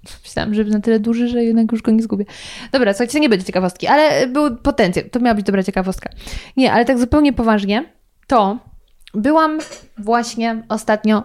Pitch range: 200-260 Hz